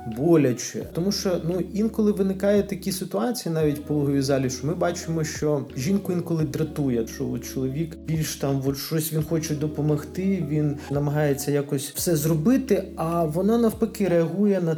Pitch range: 145-190 Hz